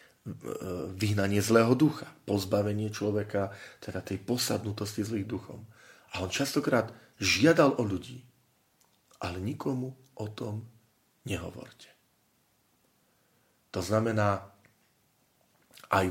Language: Slovak